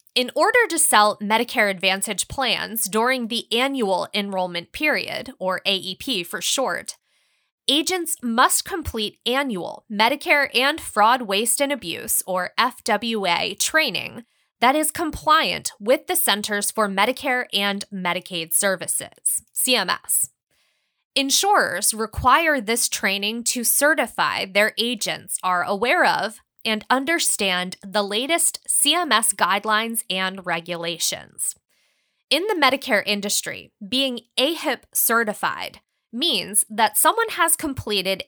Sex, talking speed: female, 115 wpm